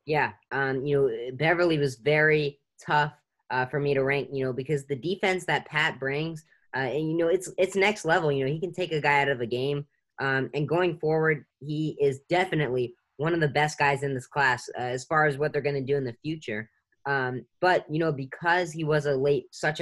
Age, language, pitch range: 10-29, English, 130-155 Hz